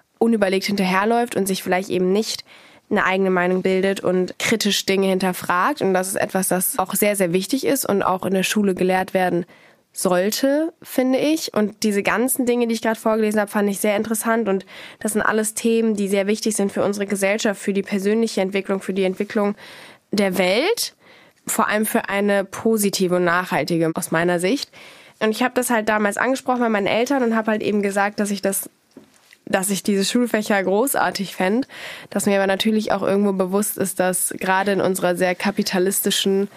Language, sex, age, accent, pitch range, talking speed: German, female, 10-29, German, 195-225 Hz, 190 wpm